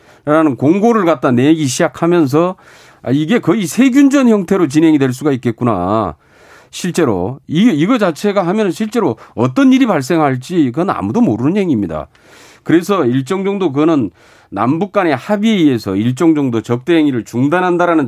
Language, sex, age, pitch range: Korean, male, 40-59, 135-210 Hz